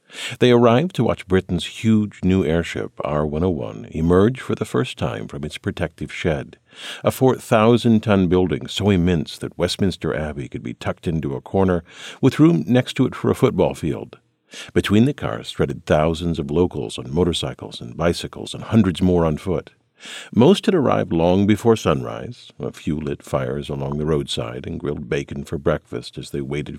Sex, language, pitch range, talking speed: male, English, 80-110 Hz, 175 wpm